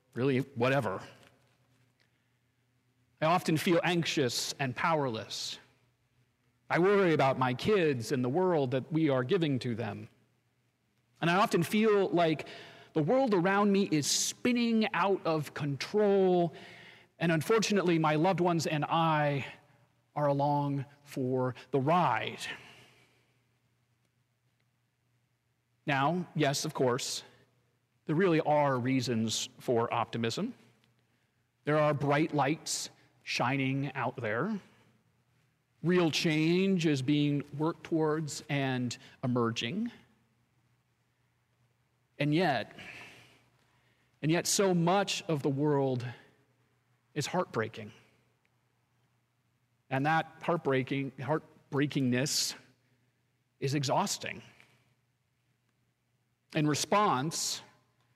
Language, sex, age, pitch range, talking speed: English, male, 40-59, 125-155 Hz, 95 wpm